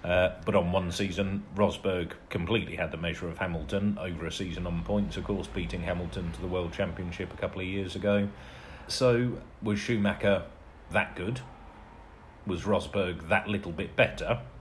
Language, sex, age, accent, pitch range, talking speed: English, male, 40-59, British, 85-100 Hz, 170 wpm